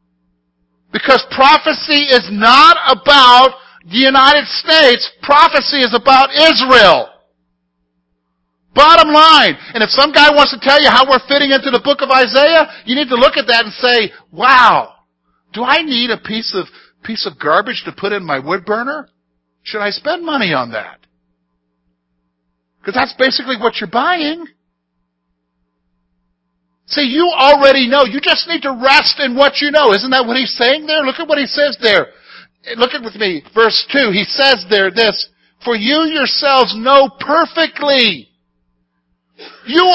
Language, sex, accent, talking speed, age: English, male, American, 160 wpm, 50-69